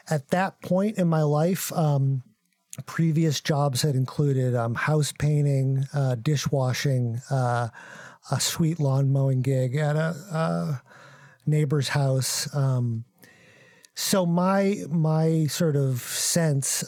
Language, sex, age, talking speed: English, male, 50-69, 120 wpm